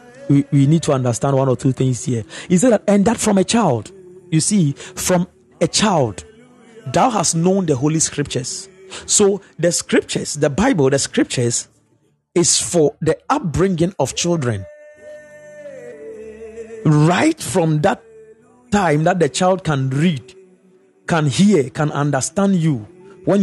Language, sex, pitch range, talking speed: English, male, 150-225 Hz, 140 wpm